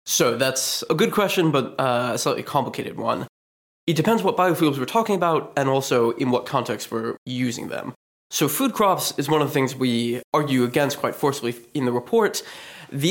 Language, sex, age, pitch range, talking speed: English, male, 20-39, 125-170 Hz, 195 wpm